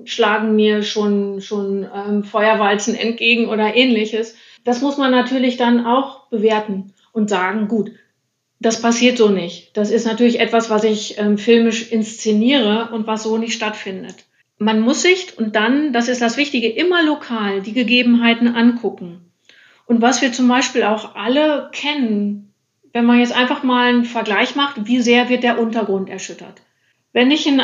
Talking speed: 165 wpm